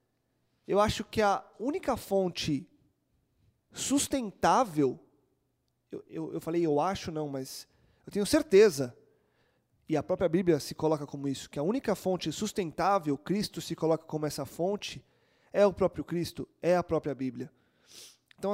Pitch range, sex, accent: 155-205 Hz, male, Brazilian